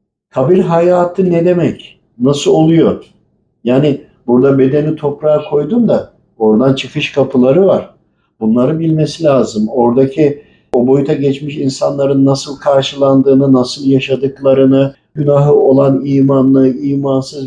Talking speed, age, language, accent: 110 wpm, 50-69, Turkish, native